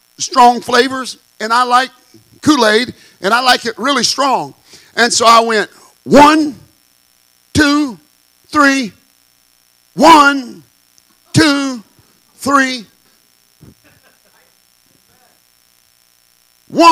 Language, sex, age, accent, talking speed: English, male, 50-69, American, 75 wpm